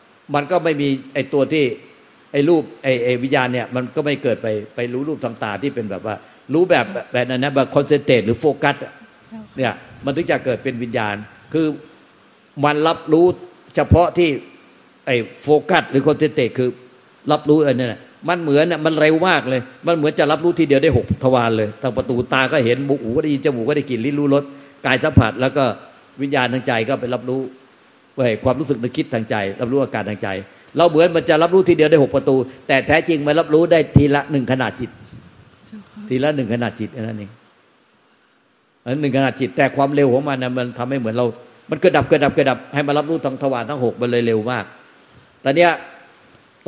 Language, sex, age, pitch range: Thai, male, 60-79, 125-155 Hz